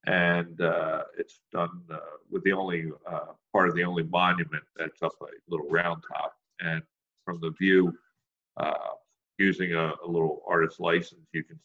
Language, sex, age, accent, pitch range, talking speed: English, male, 50-69, American, 85-140 Hz, 170 wpm